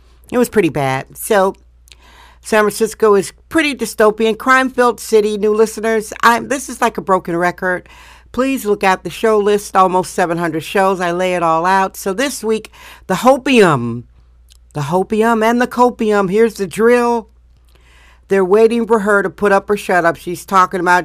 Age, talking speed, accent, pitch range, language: 50-69, 170 wpm, American, 180-230 Hz, English